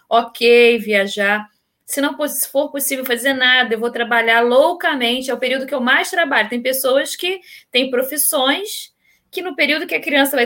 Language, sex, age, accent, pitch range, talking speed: Portuguese, female, 10-29, Brazilian, 210-280 Hz, 180 wpm